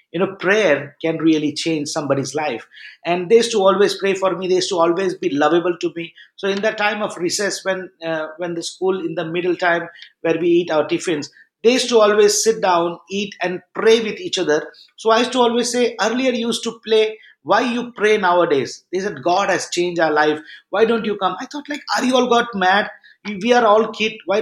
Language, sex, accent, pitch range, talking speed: English, male, Indian, 175-220 Hz, 230 wpm